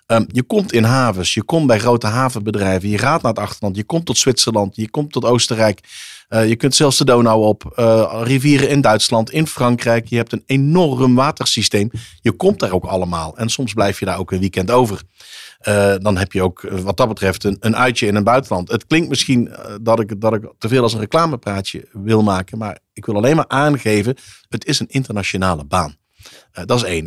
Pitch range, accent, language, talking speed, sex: 100-130 Hz, Dutch, Dutch, 205 wpm, male